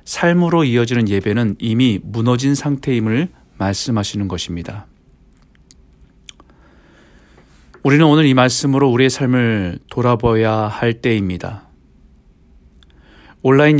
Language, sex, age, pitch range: Korean, male, 40-59, 95-135 Hz